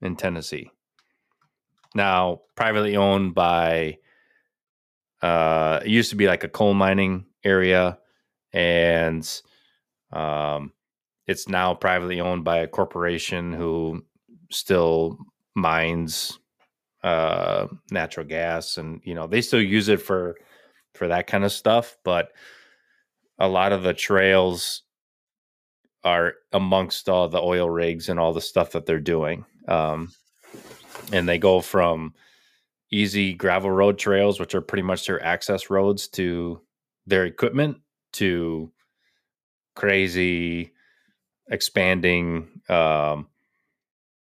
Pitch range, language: 85-95 Hz, English